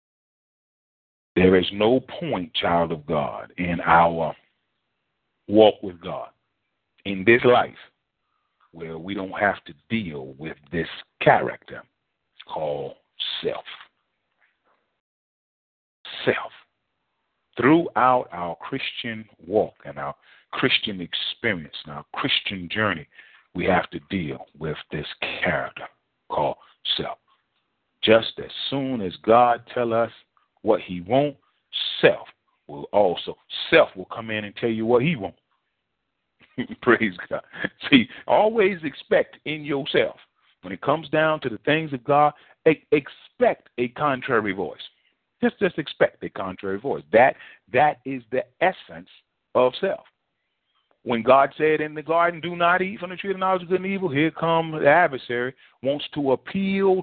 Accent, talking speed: American, 140 wpm